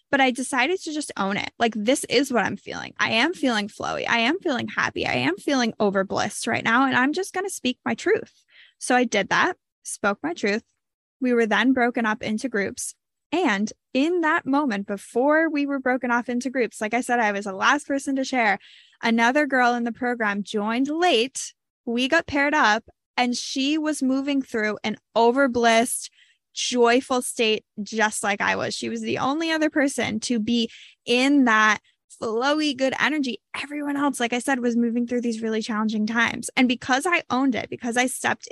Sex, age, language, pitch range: female, 10-29, English, 220-270 Hz